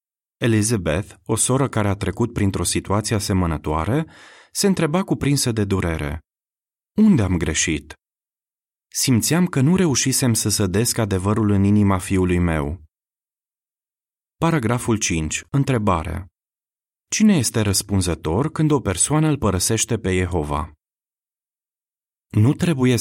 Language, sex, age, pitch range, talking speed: Romanian, male, 30-49, 90-130 Hz, 110 wpm